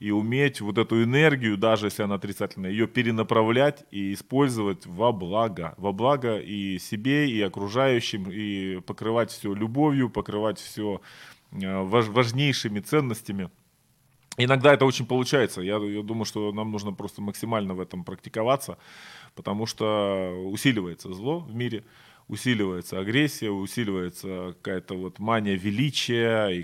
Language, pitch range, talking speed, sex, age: Ukrainian, 100-125 Hz, 130 wpm, male, 20-39